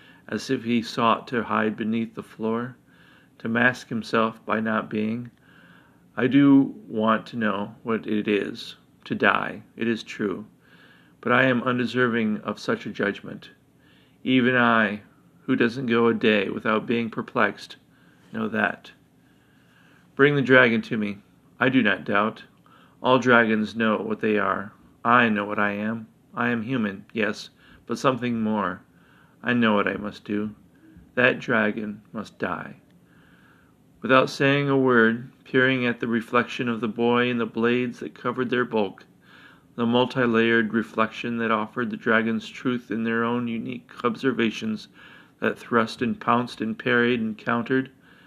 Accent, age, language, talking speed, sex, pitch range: American, 40-59, English, 155 wpm, male, 110-125 Hz